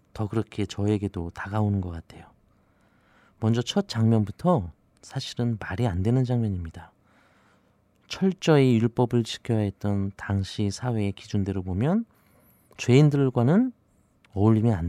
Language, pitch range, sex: Korean, 100-130 Hz, male